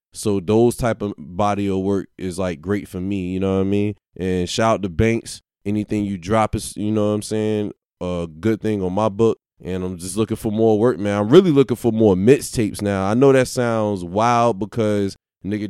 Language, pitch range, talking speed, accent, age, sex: English, 100-115 Hz, 225 wpm, American, 20-39, male